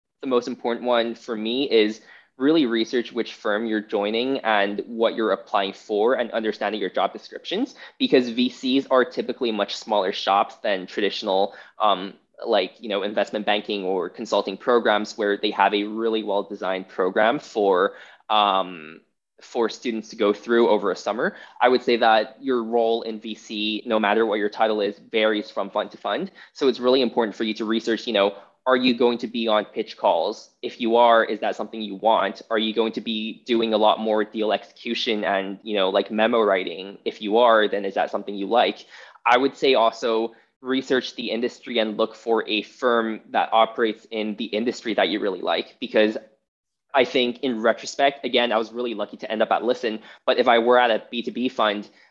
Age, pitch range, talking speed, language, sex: 20-39, 105-120 Hz, 200 wpm, English, male